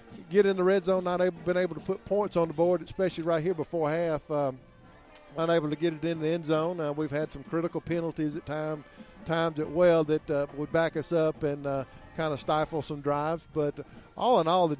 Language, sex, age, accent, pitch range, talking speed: English, male, 50-69, American, 140-165 Hz, 230 wpm